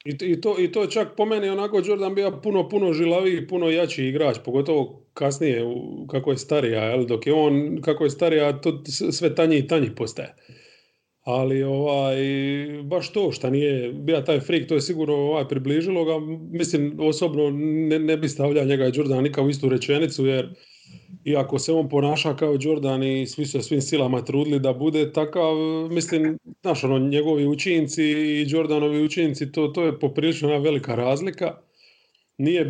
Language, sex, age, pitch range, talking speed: English, male, 30-49, 135-160 Hz, 170 wpm